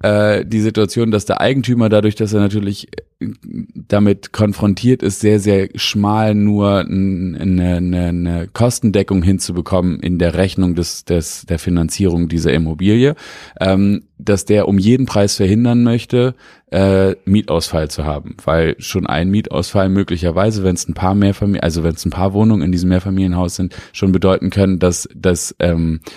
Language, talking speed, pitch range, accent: German, 155 wpm, 90-105 Hz, German